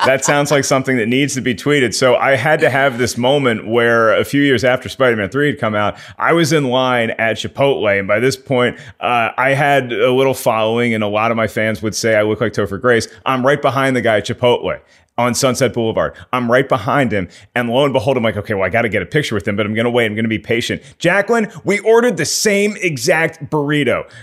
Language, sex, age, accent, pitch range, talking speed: English, male, 30-49, American, 110-145 Hz, 255 wpm